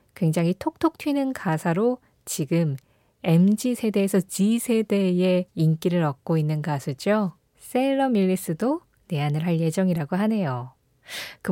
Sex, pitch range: female, 160-235 Hz